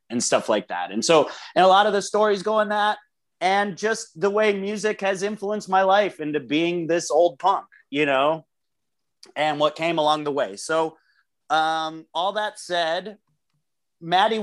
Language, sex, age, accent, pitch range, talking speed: English, male, 30-49, American, 140-195 Hz, 180 wpm